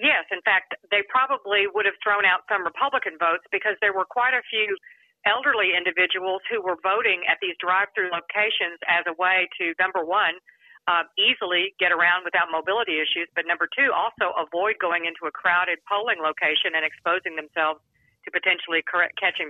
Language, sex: English, female